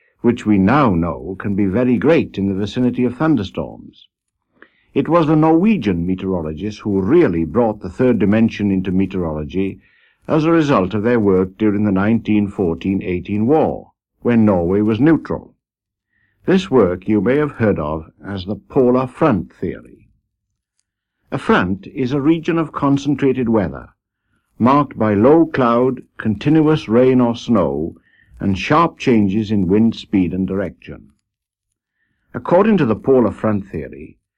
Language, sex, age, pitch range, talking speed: English, male, 60-79, 95-125 Hz, 145 wpm